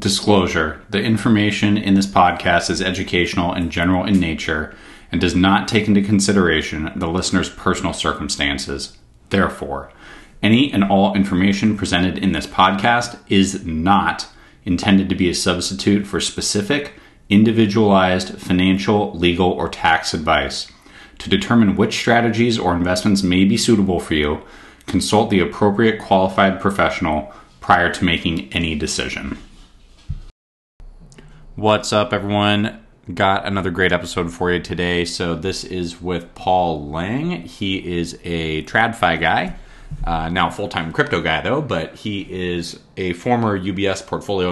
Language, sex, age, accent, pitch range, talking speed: English, male, 30-49, American, 85-105 Hz, 135 wpm